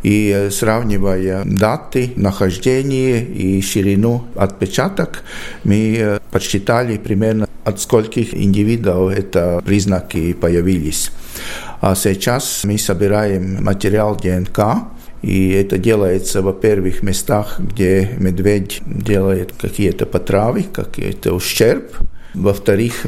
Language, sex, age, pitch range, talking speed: Russian, male, 50-69, 95-110 Hz, 95 wpm